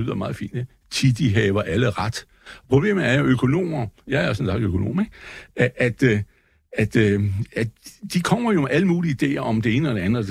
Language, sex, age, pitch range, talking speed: Danish, male, 60-79, 115-170 Hz, 200 wpm